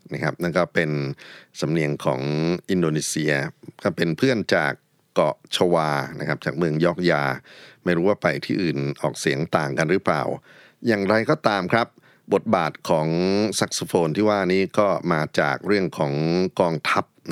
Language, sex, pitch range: Thai, male, 75-100 Hz